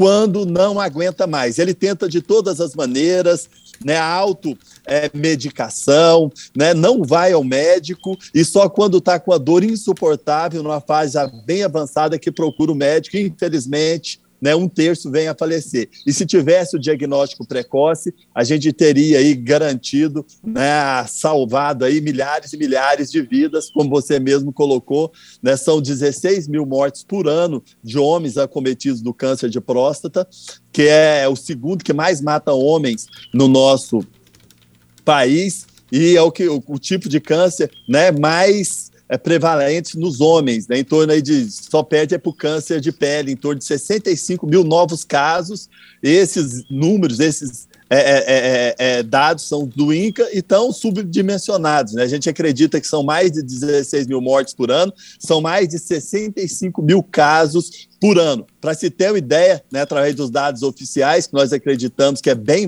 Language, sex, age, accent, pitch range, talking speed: Portuguese, male, 40-59, Brazilian, 140-180 Hz, 160 wpm